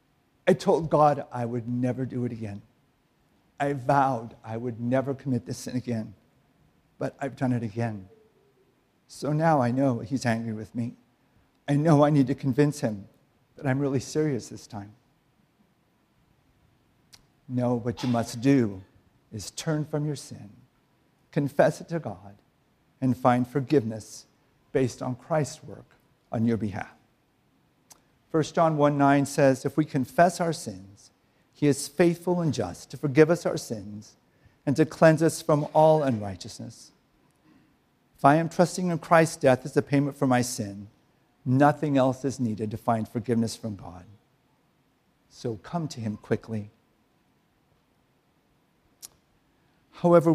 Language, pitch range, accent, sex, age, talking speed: English, 115-145 Hz, American, male, 50-69, 145 wpm